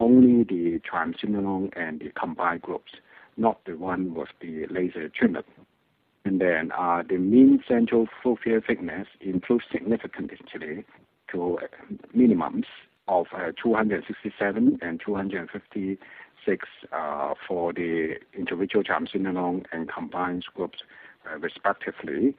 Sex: male